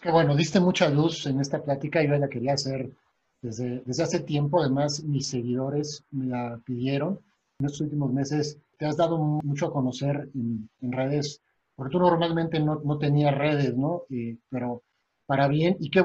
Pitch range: 135-160 Hz